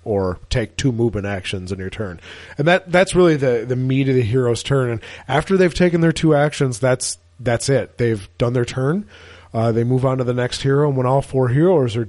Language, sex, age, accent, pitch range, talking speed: English, male, 30-49, American, 115-150 Hz, 230 wpm